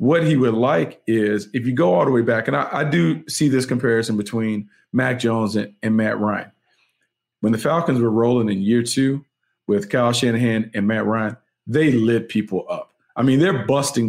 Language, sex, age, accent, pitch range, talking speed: English, male, 40-59, American, 120-150 Hz, 205 wpm